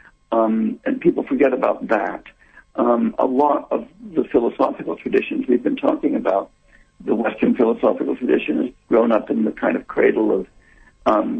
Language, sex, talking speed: English, male, 165 wpm